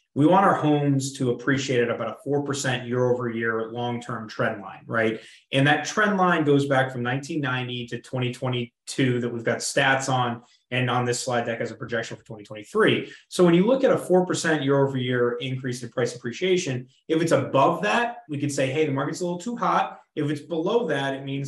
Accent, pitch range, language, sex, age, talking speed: American, 125-155 Hz, English, male, 20-39, 205 wpm